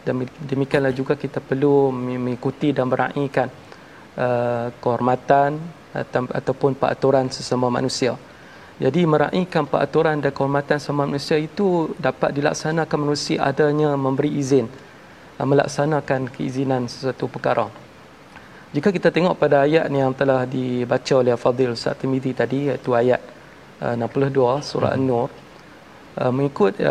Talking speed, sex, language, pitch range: 125 wpm, male, Malayalam, 130-150 Hz